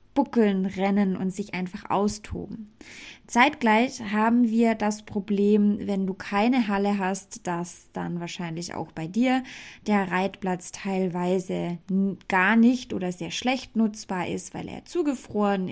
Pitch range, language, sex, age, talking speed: 195-240 Hz, German, female, 20-39, 135 wpm